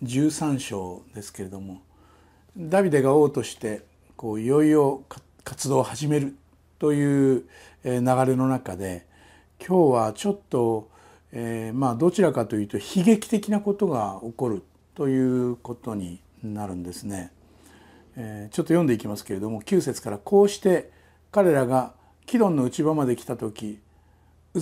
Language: Japanese